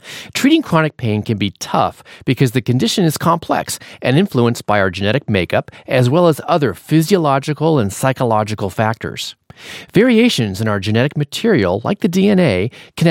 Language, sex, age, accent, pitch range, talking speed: English, male, 40-59, American, 110-170 Hz, 155 wpm